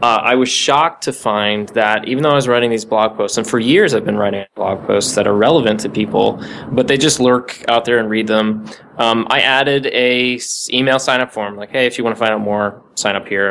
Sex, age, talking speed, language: male, 20-39, 250 wpm, English